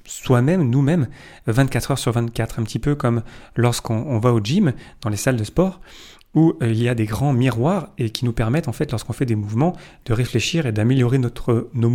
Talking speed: 215 wpm